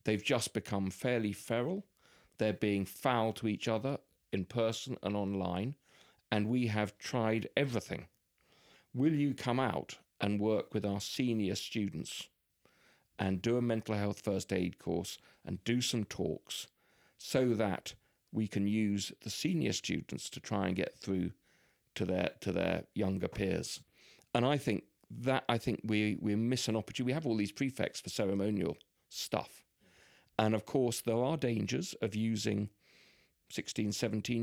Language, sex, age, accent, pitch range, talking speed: English, male, 40-59, British, 100-120 Hz, 155 wpm